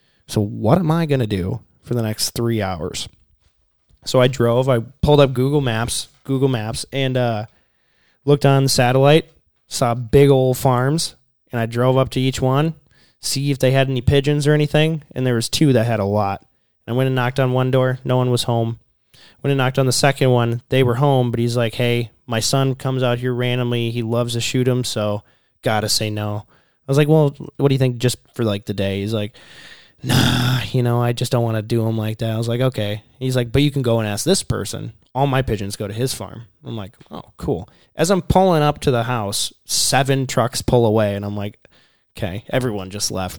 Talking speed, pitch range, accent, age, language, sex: 225 wpm, 110-135 Hz, American, 20-39, English, male